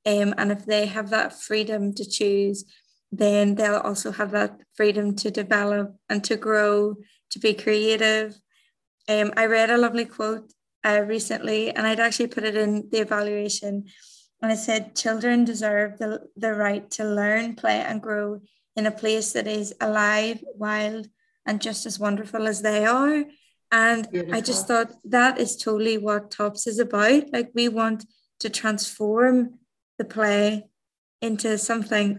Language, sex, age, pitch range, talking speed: English, female, 20-39, 210-230 Hz, 160 wpm